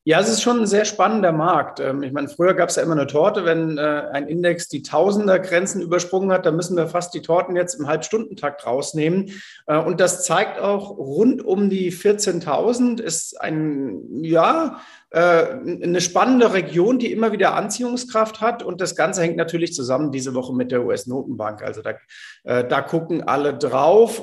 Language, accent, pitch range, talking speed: German, German, 150-200 Hz, 175 wpm